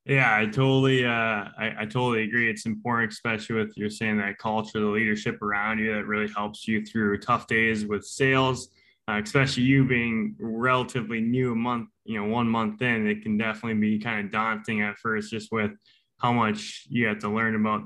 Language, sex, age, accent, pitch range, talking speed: English, male, 20-39, American, 105-115 Hz, 200 wpm